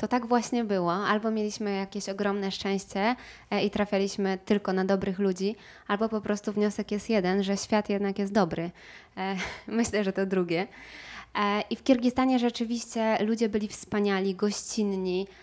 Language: Polish